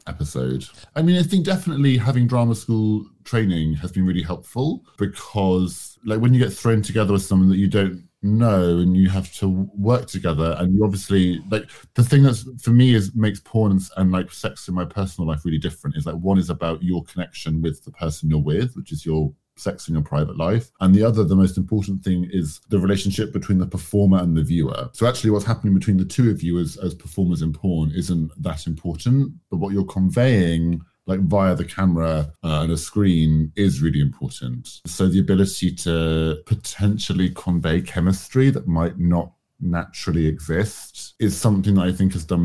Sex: male